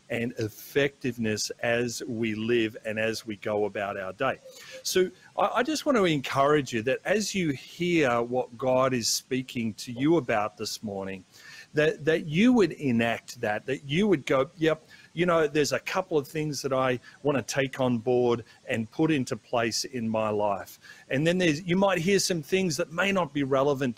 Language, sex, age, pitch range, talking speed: English, male, 40-59, 115-160 Hz, 195 wpm